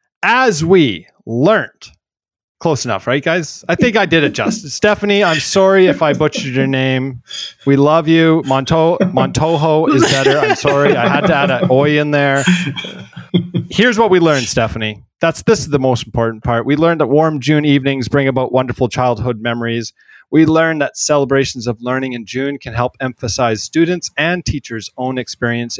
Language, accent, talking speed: English, American, 180 wpm